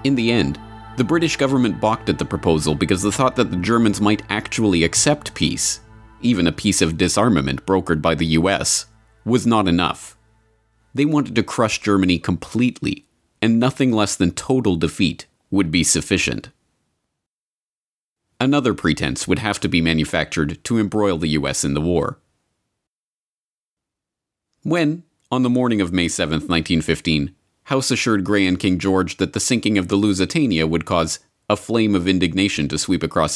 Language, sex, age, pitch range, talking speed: English, male, 30-49, 85-115 Hz, 160 wpm